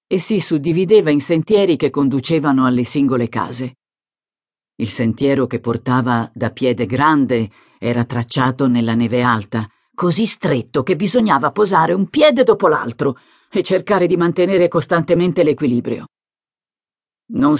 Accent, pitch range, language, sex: native, 120-170 Hz, Italian, female